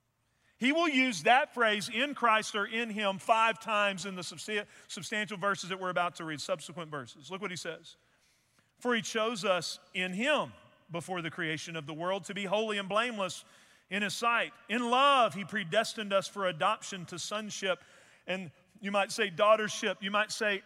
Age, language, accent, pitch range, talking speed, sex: 40-59, English, American, 185-240 Hz, 185 wpm, male